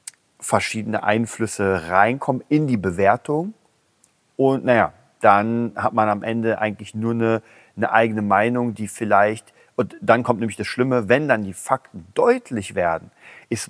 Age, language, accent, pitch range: 40-59, German, German, 100-115 Hz